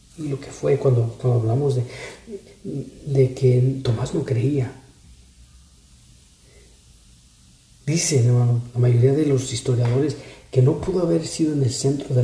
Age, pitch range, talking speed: 40-59, 120-140 Hz, 140 wpm